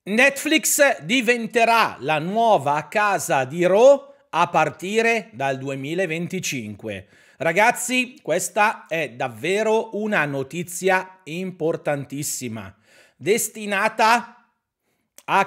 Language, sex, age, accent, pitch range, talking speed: Italian, male, 40-59, native, 170-235 Hz, 80 wpm